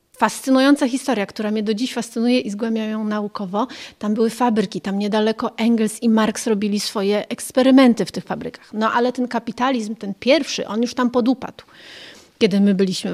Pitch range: 200-250 Hz